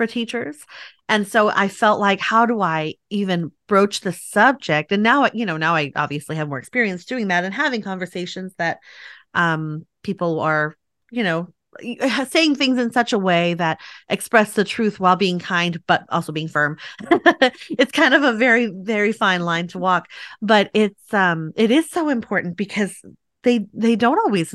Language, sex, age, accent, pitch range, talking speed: English, female, 30-49, American, 185-255 Hz, 180 wpm